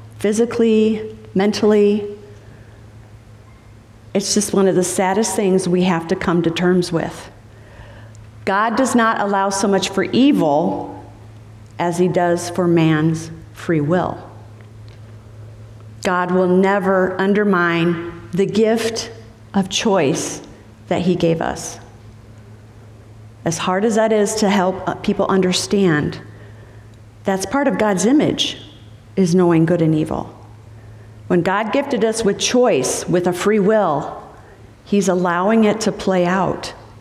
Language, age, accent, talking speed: English, 40-59, American, 125 wpm